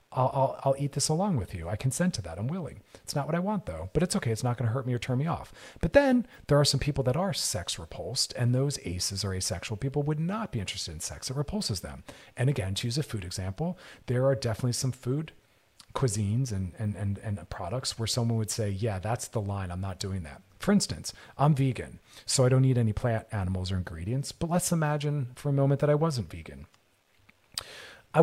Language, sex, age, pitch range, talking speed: English, male, 40-59, 100-135 Hz, 240 wpm